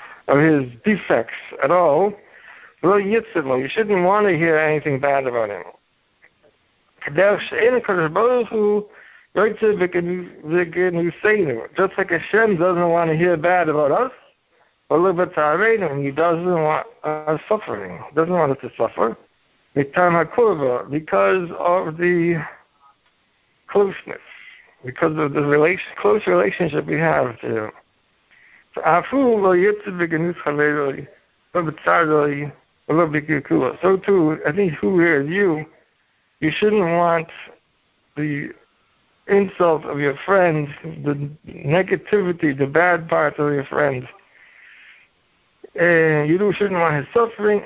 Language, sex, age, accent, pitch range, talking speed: English, male, 60-79, American, 150-190 Hz, 105 wpm